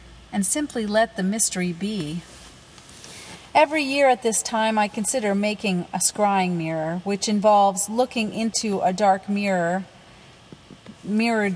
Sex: female